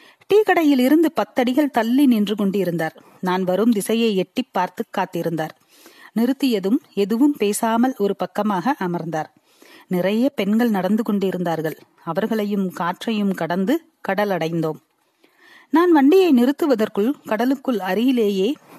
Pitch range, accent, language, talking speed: 190-270 Hz, native, Tamil, 90 wpm